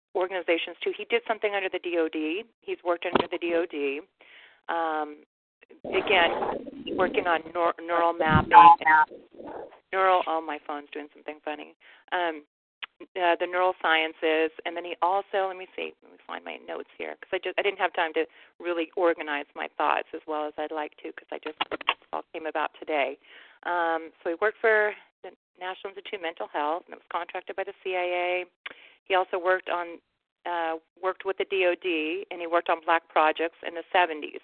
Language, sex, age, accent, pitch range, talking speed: English, female, 40-59, American, 160-190 Hz, 190 wpm